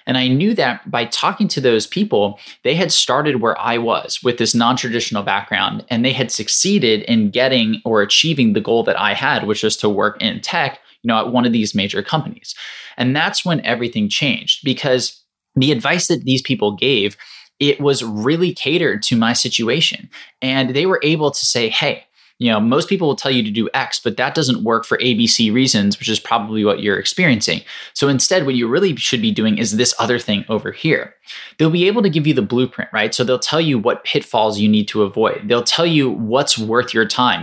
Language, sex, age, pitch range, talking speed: English, male, 20-39, 115-160 Hz, 215 wpm